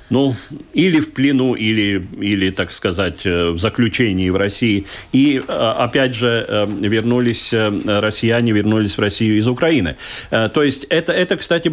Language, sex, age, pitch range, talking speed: Russian, male, 40-59, 110-150 Hz, 140 wpm